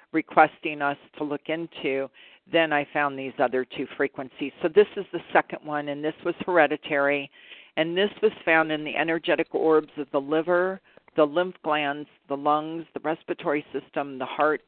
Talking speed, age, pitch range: 175 wpm, 50-69, 140-170 Hz